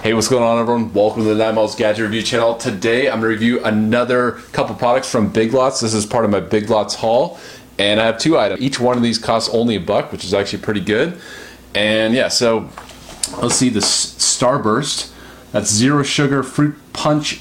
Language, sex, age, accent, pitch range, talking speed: English, male, 30-49, American, 105-130 Hz, 205 wpm